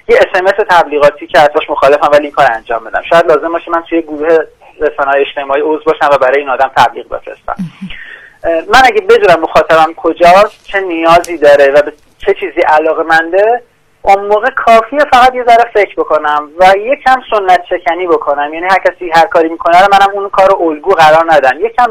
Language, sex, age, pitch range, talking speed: Persian, male, 30-49, 160-225 Hz, 180 wpm